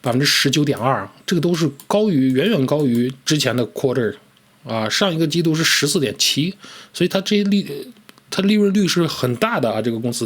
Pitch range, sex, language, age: 115-160 Hz, male, Chinese, 20-39